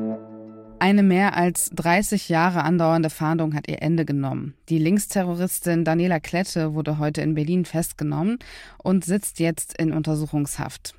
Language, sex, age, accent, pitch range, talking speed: German, female, 20-39, German, 150-175 Hz, 135 wpm